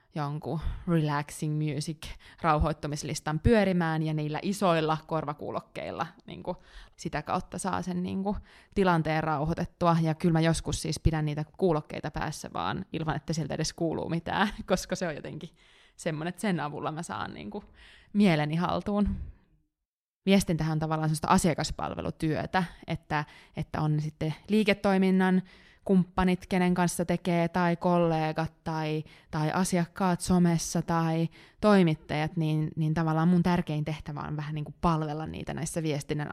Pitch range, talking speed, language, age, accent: 155-180 Hz, 135 wpm, Finnish, 20-39, native